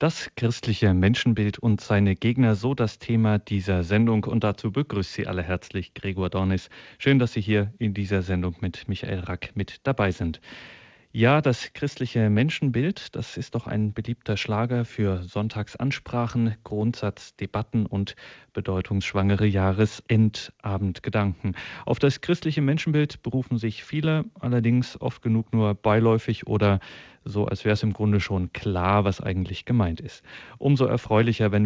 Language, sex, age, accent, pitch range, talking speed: German, male, 40-59, German, 100-120 Hz, 145 wpm